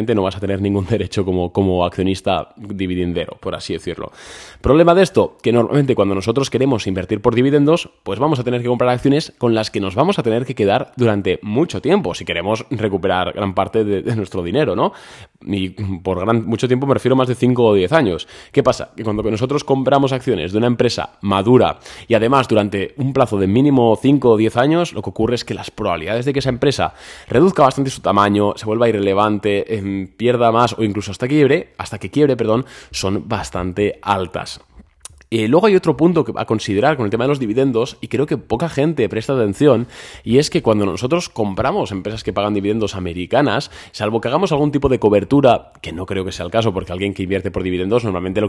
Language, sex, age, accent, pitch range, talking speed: Spanish, male, 20-39, Spanish, 100-130 Hz, 215 wpm